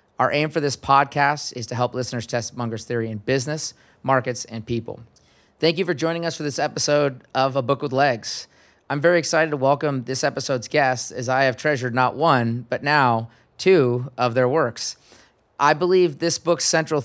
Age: 30-49